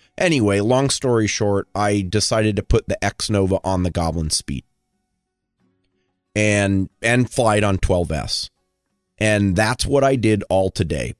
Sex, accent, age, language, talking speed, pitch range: male, American, 30-49, English, 145 wpm, 95-115 Hz